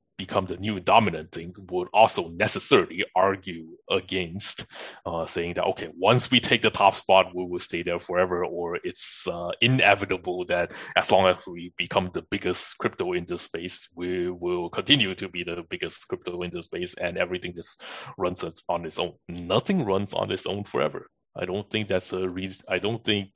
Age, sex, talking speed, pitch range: 20-39, male, 190 wpm, 90-100 Hz